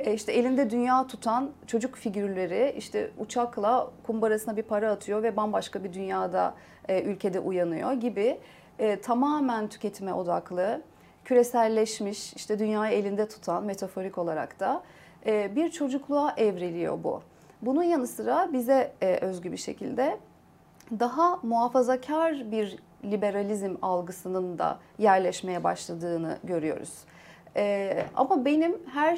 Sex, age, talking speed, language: female, 40-59, 120 wpm, Turkish